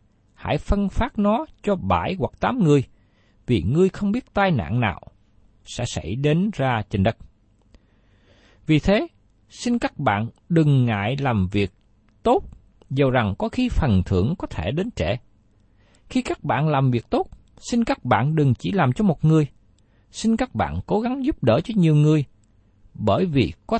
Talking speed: 175 wpm